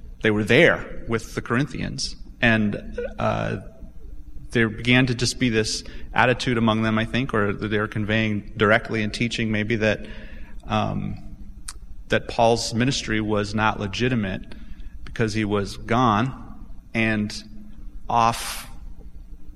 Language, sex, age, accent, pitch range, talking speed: English, male, 30-49, American, 105-125 Hz, 125 wpm